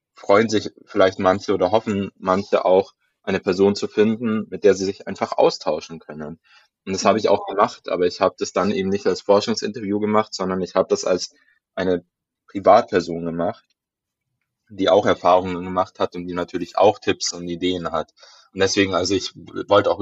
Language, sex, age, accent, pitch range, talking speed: German, male, 20-39, German, 95-115 Hz, 185 wpm